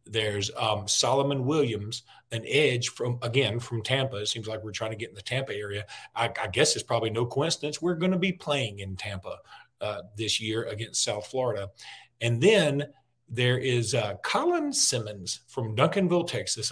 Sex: male